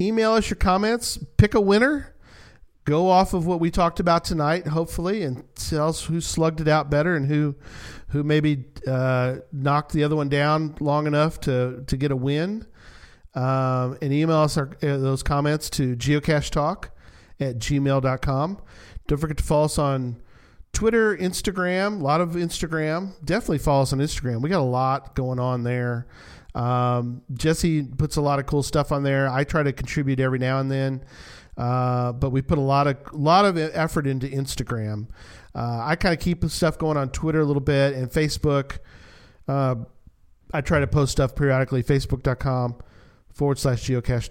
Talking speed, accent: 180 wpm, American